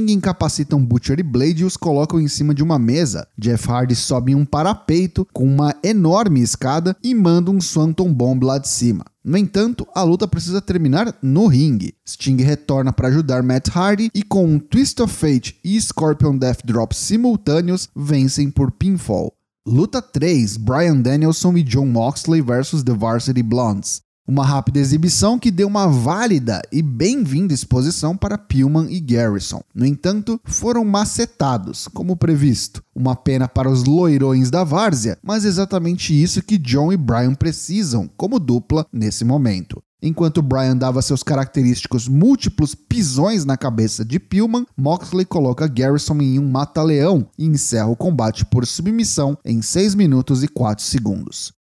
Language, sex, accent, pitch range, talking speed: Portuguese, male, Brazilian, 125-180 Hz, 165 wpm